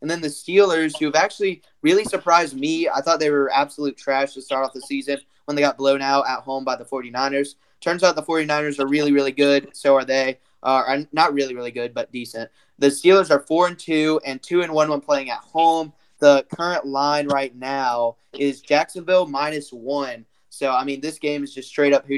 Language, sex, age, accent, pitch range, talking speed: English, male, 10-29, American, 135-155 Hz, 220 wpm